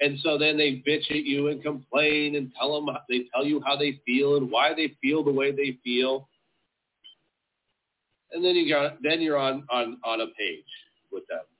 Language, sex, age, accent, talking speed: English, male, 40-59, American, 200 wpm